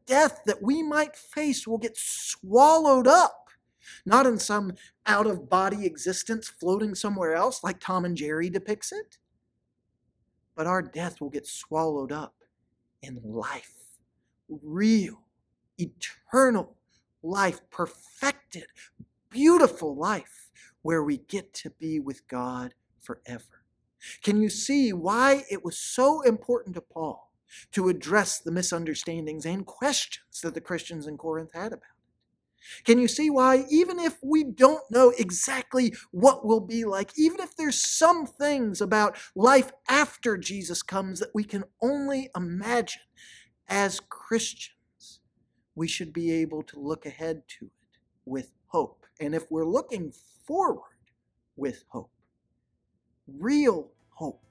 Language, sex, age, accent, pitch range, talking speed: English, male, 40-59, American, 165-260 Hz, 135 wpm